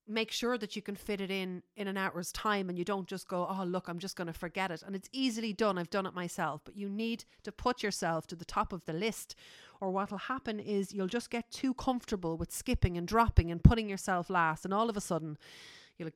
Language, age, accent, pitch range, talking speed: English, 40-59, Irish, 165-210 Hz, 255 wpm